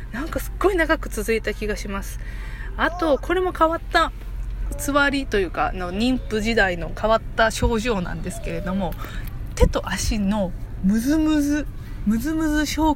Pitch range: 195-305 Hz